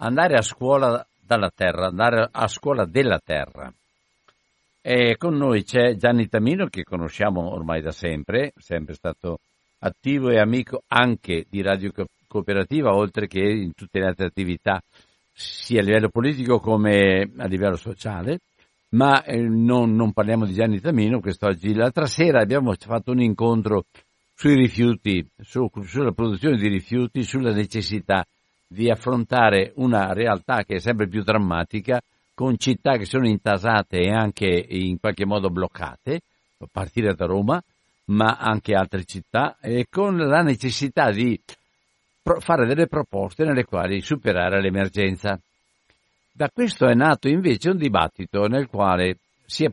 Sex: male